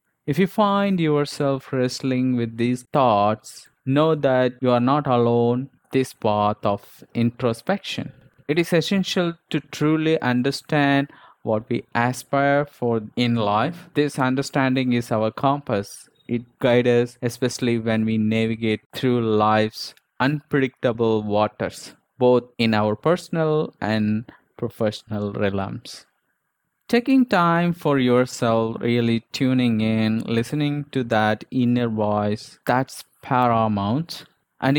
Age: 20-39